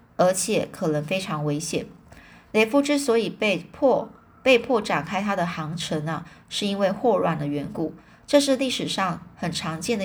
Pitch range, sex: 165-205 Hz, female